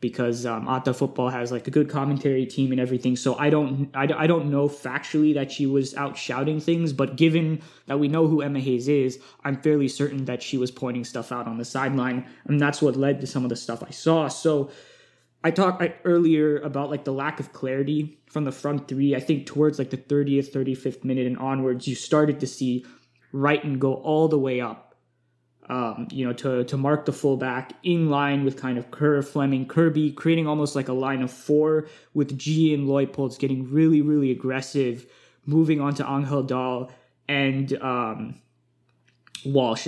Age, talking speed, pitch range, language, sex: 20-39, 195 wpm, 130-150 Hz, English, male